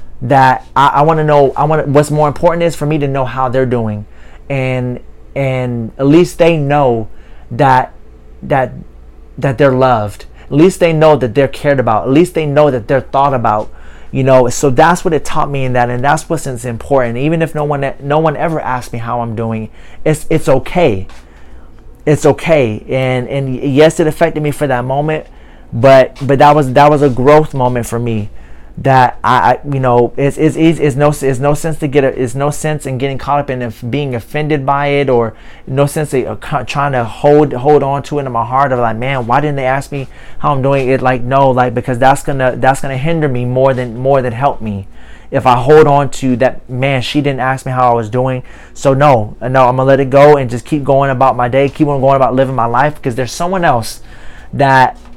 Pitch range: 125-145 Hz